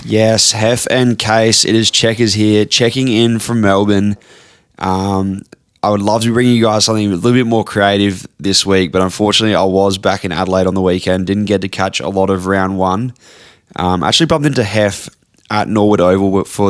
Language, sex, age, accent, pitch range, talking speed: English, male, 20-39, Australian, 95-105 Hz, 200 wpm